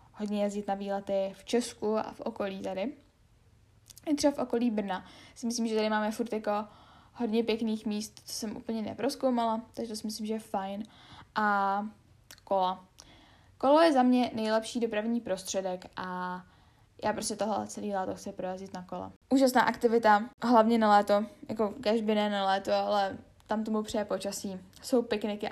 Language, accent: Czech, native